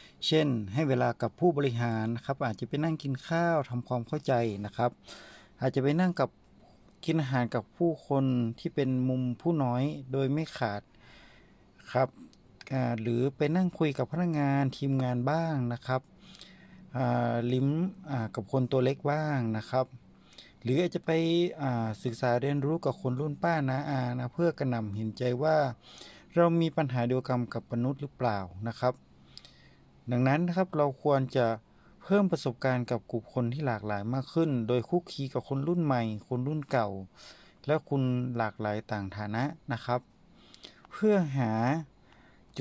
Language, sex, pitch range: Thai, male, 120-145 Hz